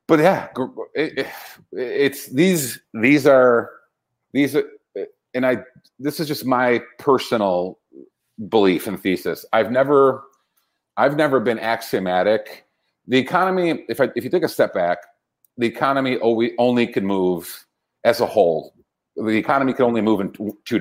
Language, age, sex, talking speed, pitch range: English, 40-59, male, 150 wpm, 115-150 Hz